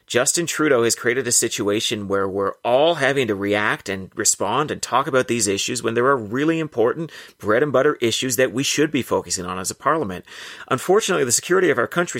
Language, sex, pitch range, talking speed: English, male, 110-155 Hz, 210 wpm